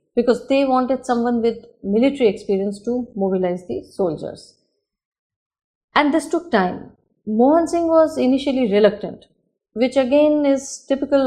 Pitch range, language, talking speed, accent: 195-245 Hz, English, 130 wpm, Indian